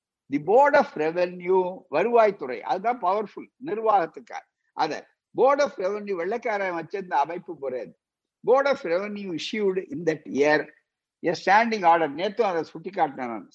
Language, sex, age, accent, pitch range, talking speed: Tamil, male, 60-79, native, 175-280 Hz, 135 wpm